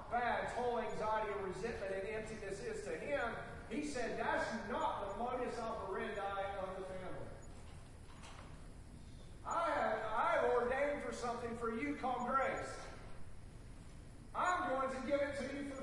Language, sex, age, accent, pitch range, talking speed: English, male, 40-59, American, 225-280 Hz, 145 wpm